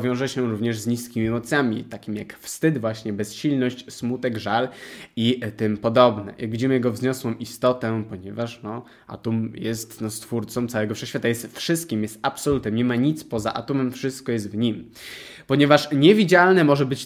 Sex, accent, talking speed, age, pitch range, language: male, native, 160 wpm, 20-39, 115-140 Hz, Polish